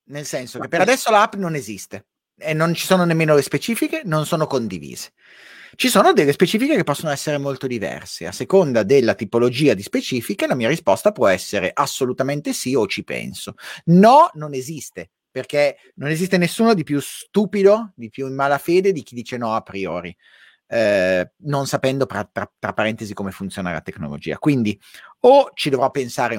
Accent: Italian